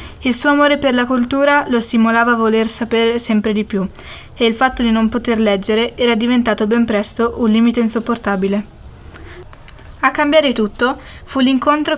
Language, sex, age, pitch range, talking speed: Italian, female, 20-39, 220-260 Hz, 165 wpm